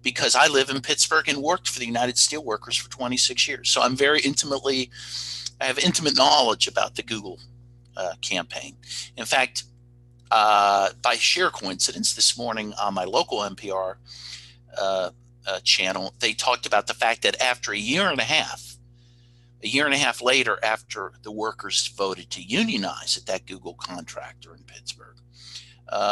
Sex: male